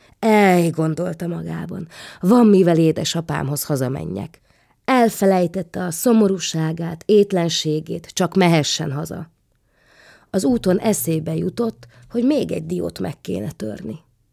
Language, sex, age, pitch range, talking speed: Hungarian, female, 30-49, 150-185 Hz, 100 wpm